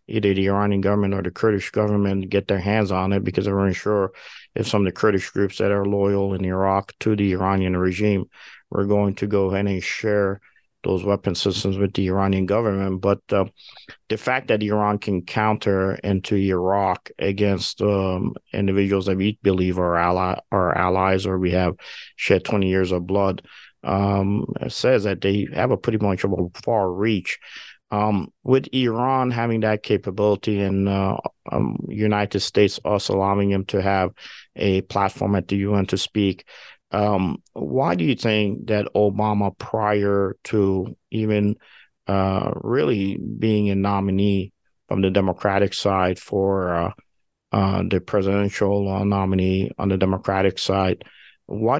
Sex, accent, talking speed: male, American, 160 wpm